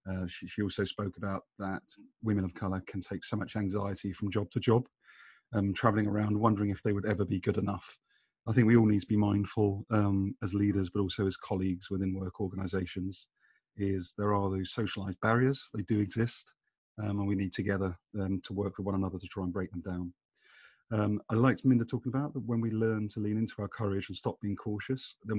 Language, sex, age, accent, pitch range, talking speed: English, male, 30-49, British, 100-110 Hz, 220 wpm